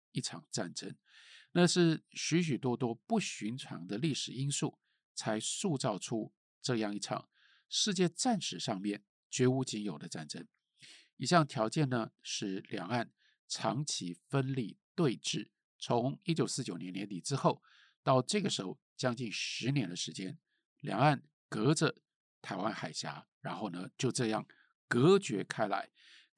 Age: 50-69